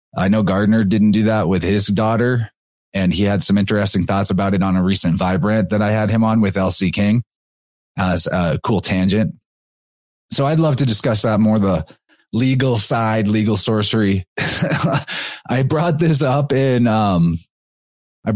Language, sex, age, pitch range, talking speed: English, male, 30-49, 95-125 Hz, 170 wpm